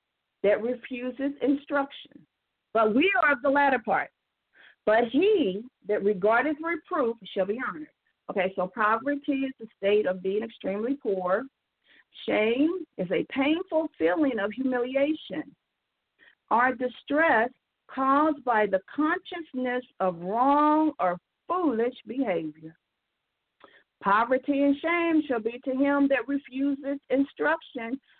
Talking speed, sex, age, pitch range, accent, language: 120 wpm, female, 50-69, 225-295 Hz, American, English